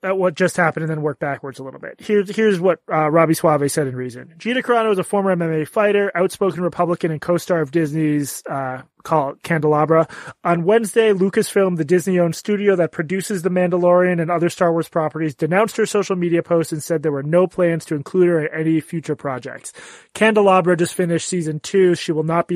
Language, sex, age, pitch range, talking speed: English, male, 30-49, 160-190 Hz, 205 wpm